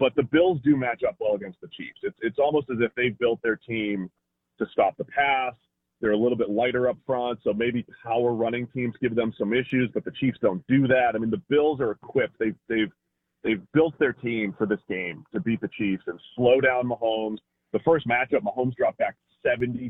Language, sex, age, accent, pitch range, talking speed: English, male, 30-49, American, 105-125 Hz, 225 wpm